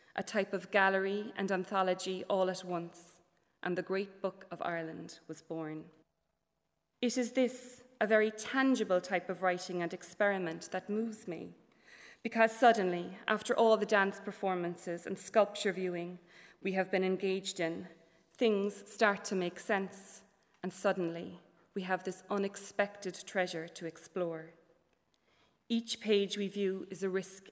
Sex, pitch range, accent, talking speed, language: female, 175-205 Hz, Irish, 145 wpm, English